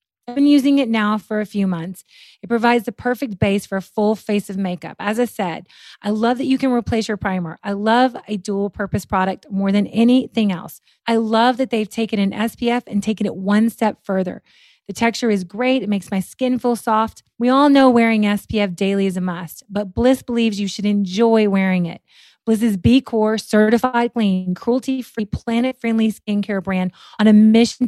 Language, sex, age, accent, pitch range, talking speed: English, female, 30-49, American, 195-235 Hz, 200 wpm